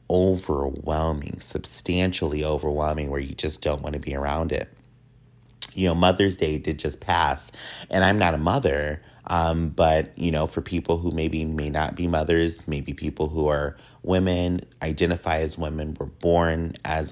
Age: 30-49